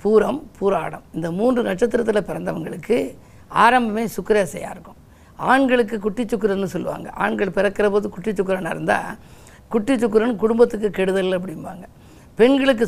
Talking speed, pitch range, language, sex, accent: 115 wpm, 195-235 Hz, Tamil, female, native